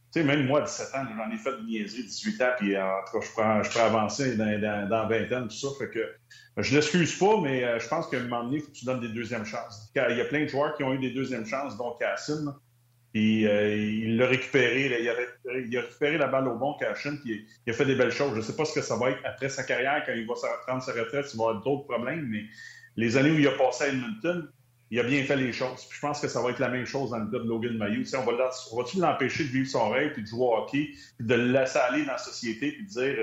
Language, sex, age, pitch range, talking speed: French, male, 40-59, 115-140 Hz, 305 wpm